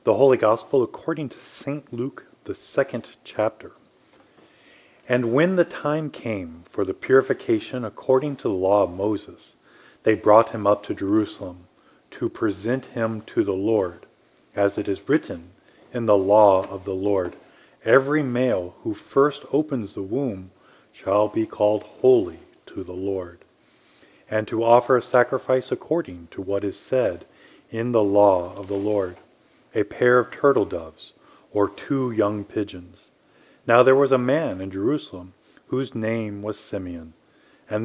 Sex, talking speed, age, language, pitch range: male, 155 wpm, 40-59, English, 100-130 Hz